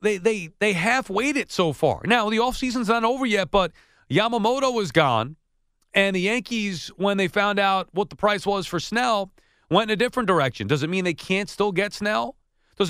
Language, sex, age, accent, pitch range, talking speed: English, male, 40-59, American, 175-220 Hz, 205 wpm